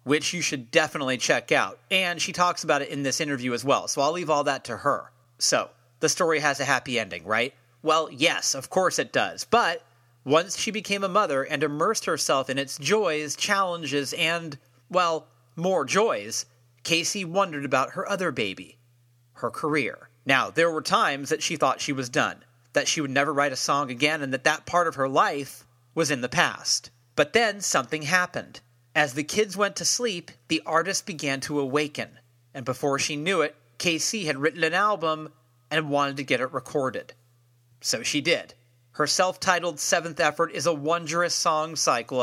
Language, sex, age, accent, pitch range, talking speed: English, male, 30-49, American, 130-170 Hz, 190 wpm